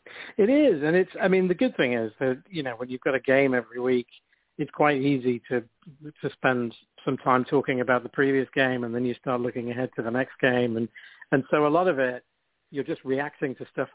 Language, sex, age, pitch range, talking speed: English, male, 60-79, 125-150 Hz, 235 wpm